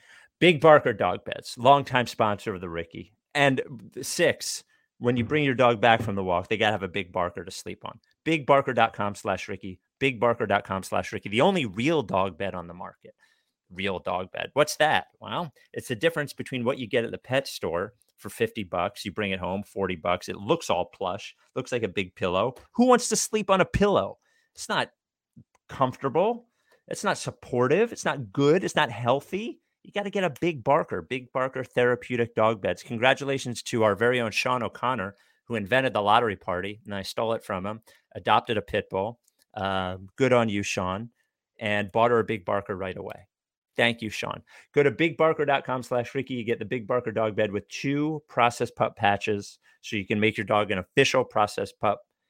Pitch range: 100-135 Hz